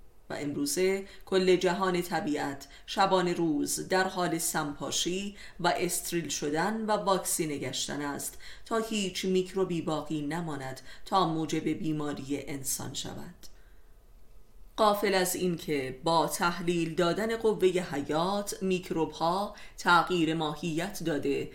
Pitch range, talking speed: 155-190 Hz, 110 wpm